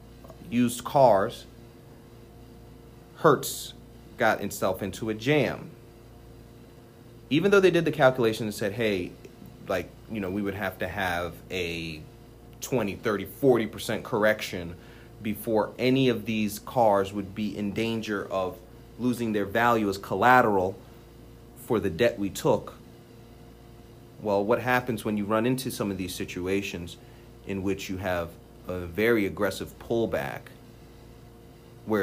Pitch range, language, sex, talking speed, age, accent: 100-120 Hz, English, male, 130 wpm, 30-49, American